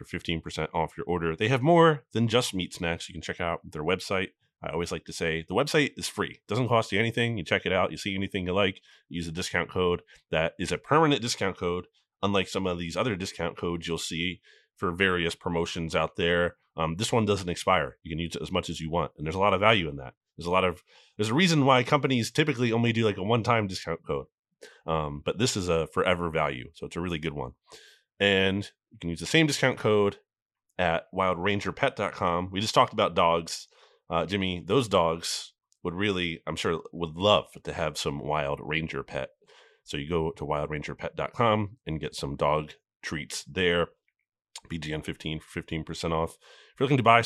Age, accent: 30-49, American